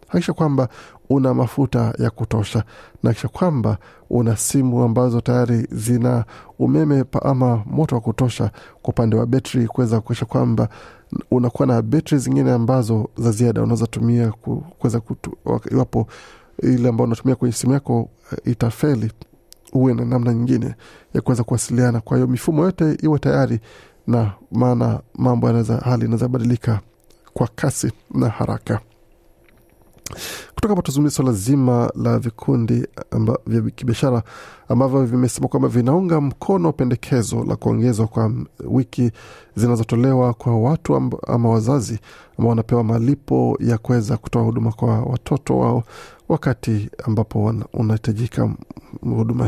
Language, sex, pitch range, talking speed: Swahili, male, 115-130 Hz, 130 wpm